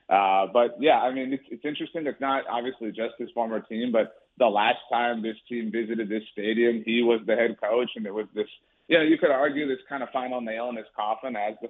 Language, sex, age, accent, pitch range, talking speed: English, male, 30-49, American, 105-125 Hz, 245 wpm